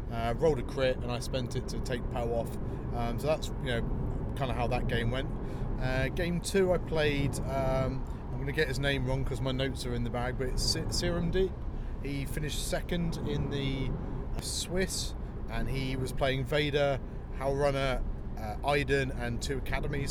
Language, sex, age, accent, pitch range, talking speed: English, male, 30-49, British, 125-150 Hz, 195 wpm